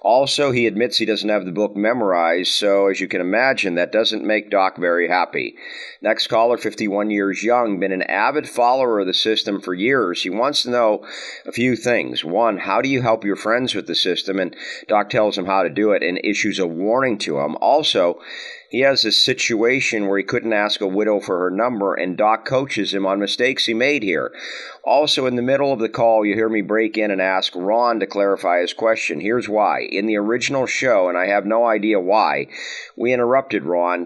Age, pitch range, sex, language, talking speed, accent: 50-69, 95-120 Hz, male, English, 215 wpm, American